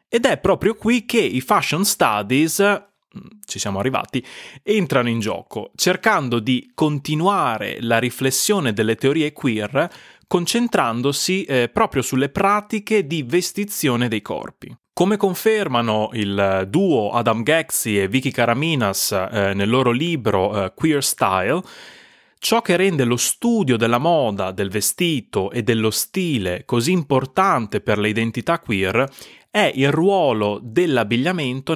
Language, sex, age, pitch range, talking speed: Italian, male, 30-49, 115-185 Hz, 130 wpm